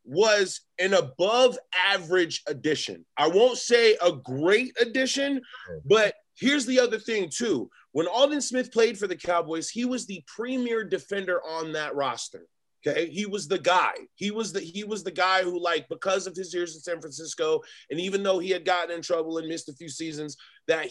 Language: English